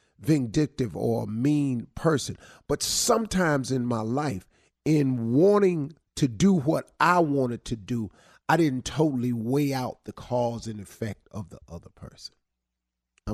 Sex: male